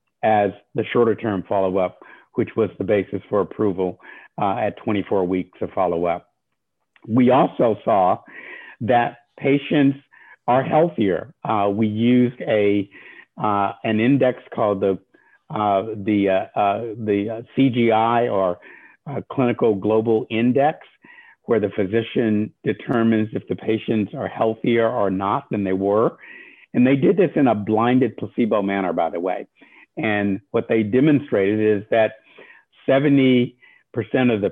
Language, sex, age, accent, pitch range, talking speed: English, male, 50-69, American, 100-120 Hz, 125 wpm